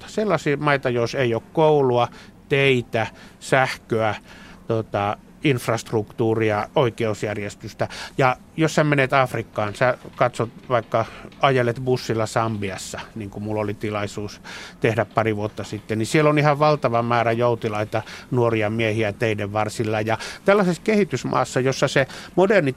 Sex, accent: male, native